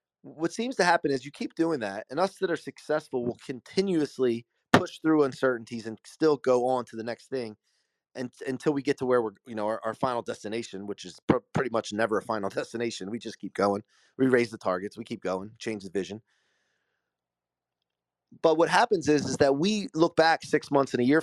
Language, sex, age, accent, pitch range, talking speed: English, male, 30-49, American, 110-155 Hz, 220 wpm